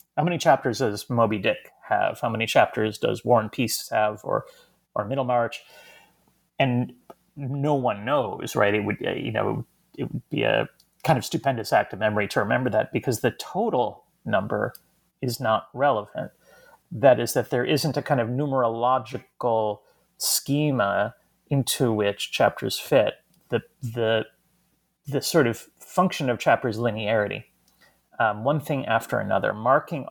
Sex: male